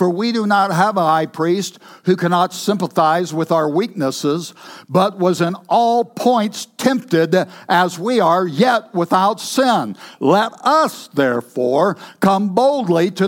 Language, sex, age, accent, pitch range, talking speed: English, male, 60-79, American, 185-240 Hz, 145 wpm